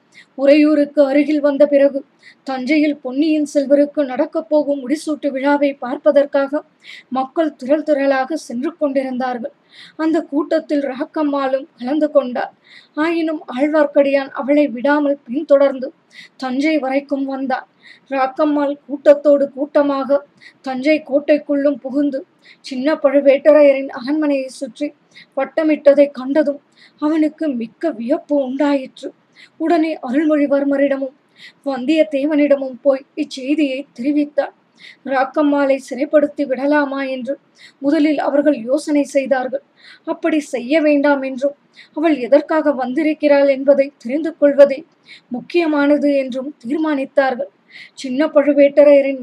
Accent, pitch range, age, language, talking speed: native, 275-300 Hz, 20-39, Tamil, 90 wpm